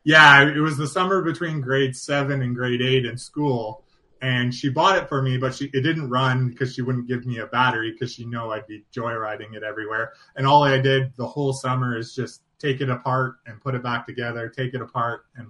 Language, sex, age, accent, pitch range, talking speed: English, male, 20-39, American, 115-130 Hz, 230 wpm